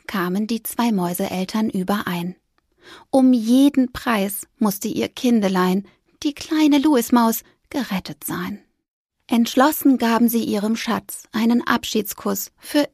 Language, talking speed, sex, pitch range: German, 110 wpm, female, 205-270 Hz